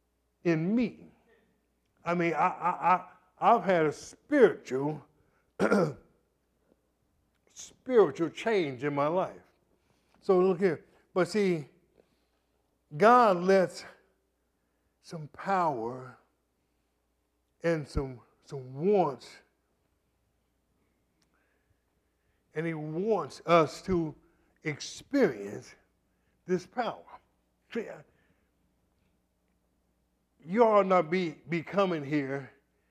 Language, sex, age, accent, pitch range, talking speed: English, male, 60-79, American, 130-195 Hz, 80 wpm